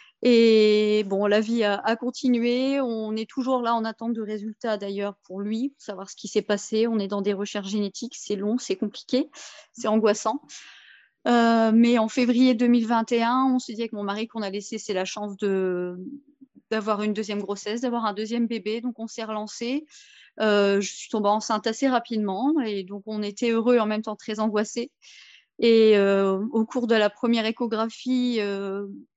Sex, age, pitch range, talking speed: female, 30-49, 205-240 Hz, 190 wpm